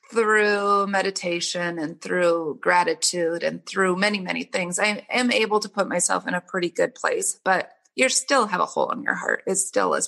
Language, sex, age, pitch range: English, female, 30-49, 180-215 Hz